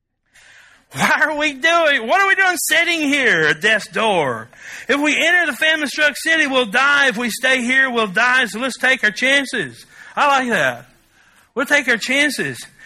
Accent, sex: American, male